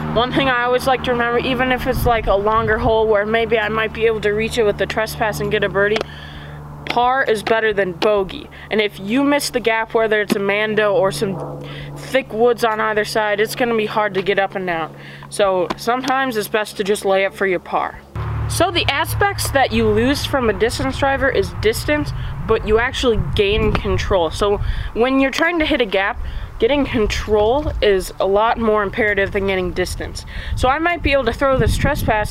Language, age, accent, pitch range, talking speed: English, 20-39, American, 200-255 Hz, 215 wpm